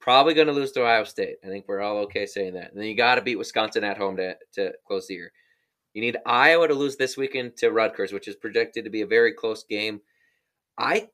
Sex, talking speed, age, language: male, 250 wpm, 20-39, English